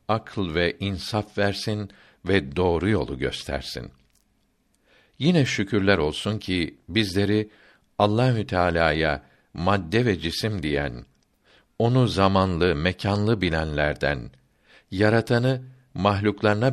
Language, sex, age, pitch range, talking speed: Turkish, male, 60-79, 85-110 Hz, 90 wpm